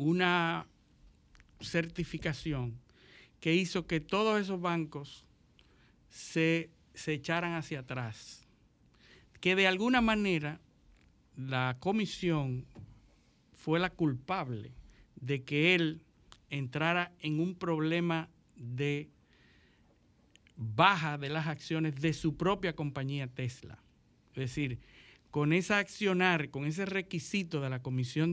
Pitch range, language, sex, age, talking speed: 140-180 Hz, Spanish, male, 60-79, 105 wpm